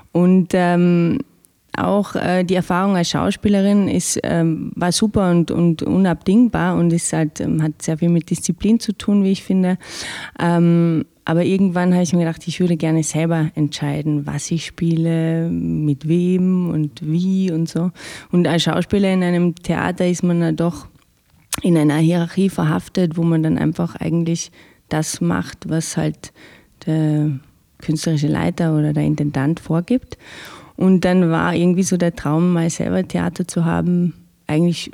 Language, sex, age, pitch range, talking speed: German, female, 30-49, 165-185 Hz, 160 wpm